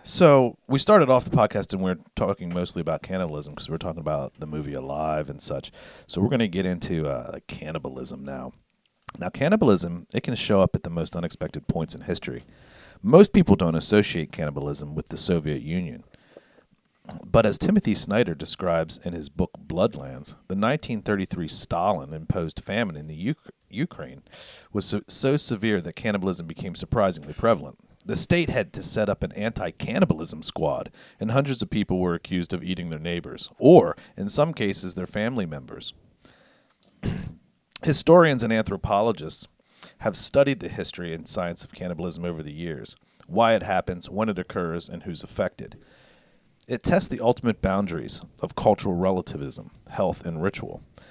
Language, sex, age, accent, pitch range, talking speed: English, male, 40-59, American, 85-105 Hz, 160 wpm